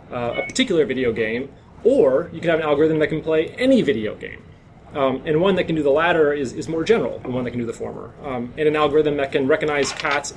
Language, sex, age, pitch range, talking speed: English, male, 30-49, 130-160 Hz, 255 wpm